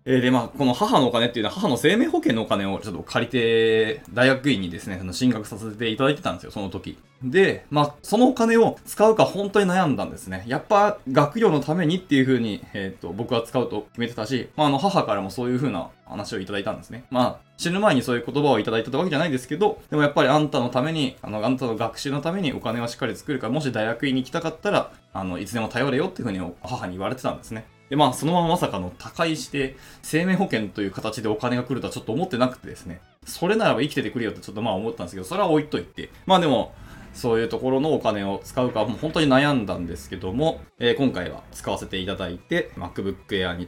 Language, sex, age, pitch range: Japanese, male, 20-39, 110-150 Hz